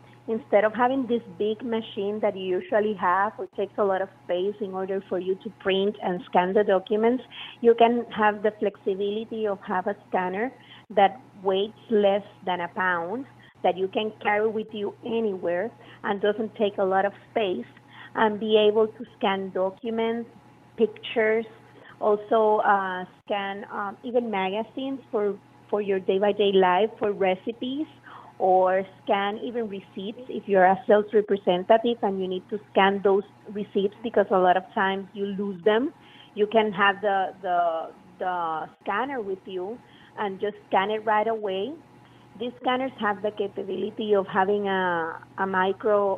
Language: English